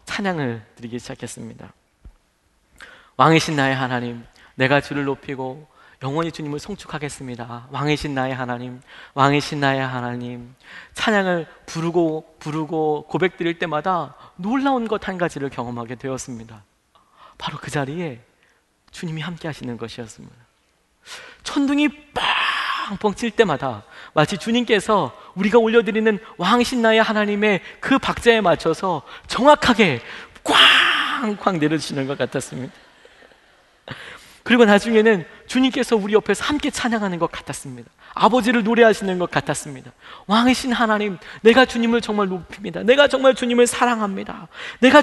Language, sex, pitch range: Korean, male, 140-230 Hz